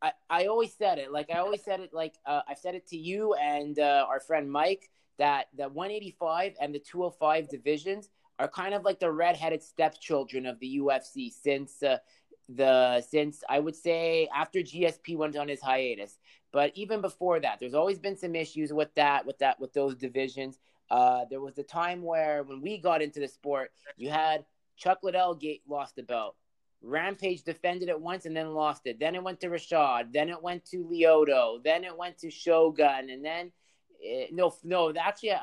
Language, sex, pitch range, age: English, male, 145-180 Hz, 20-39